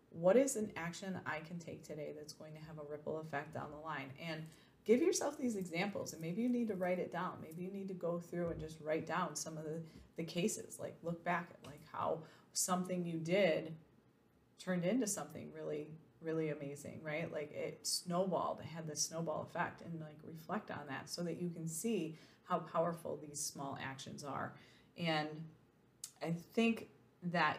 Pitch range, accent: 155-180 Hz, American